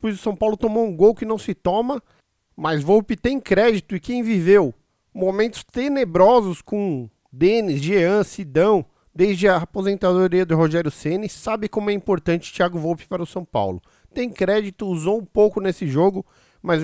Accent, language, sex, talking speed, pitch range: Brazilian, Portuguese, male, 170 wpm, 180-225 Hz